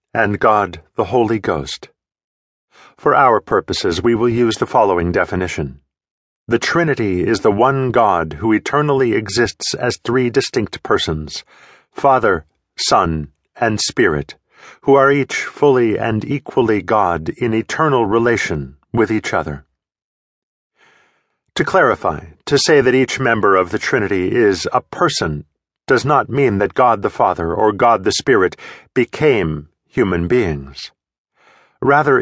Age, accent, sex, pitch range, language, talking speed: 50-69, American, male, 80-125 Hz, English, 130 wpm